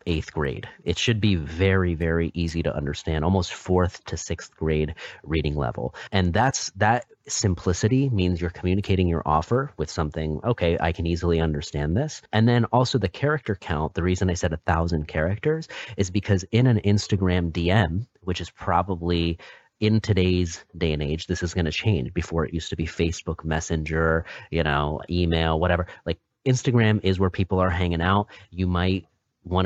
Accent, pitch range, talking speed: American, 85-105 Hz, 180 wpm